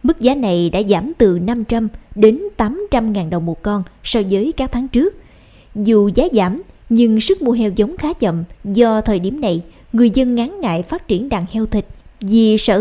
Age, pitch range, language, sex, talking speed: 20-39, 195-245 Hz, Vietnamese, female, 200 wpm